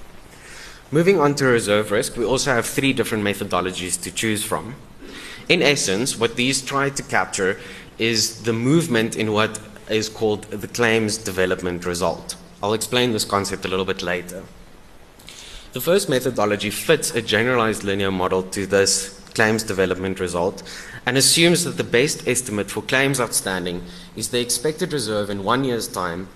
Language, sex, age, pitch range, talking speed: English, male, 20-39, 95-120 Hz, 160 wpm